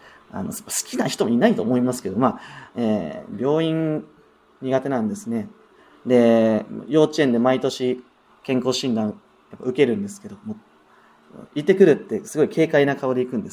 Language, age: Japanese, 30-49